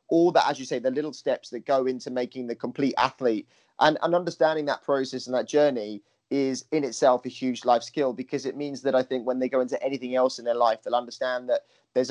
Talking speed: 245 wpm